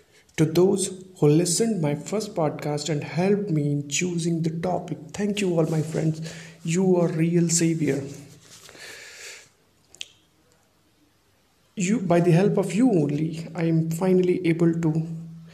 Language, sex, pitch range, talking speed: Hindi, male, 160-185 Hz, 135 wpm